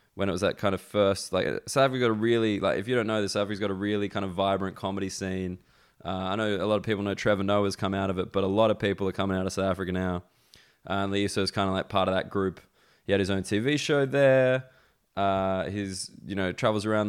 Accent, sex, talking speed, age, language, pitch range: Australian, male, 275 wpm, 20-39, English, 100-110 Hz